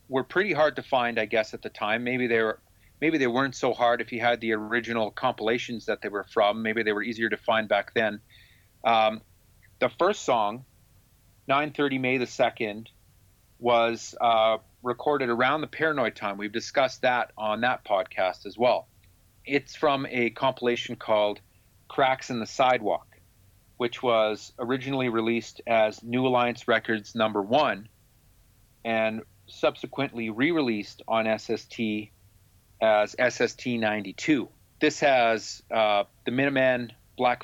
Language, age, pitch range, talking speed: English, 40-59, 105-125 Hz, 145 wpm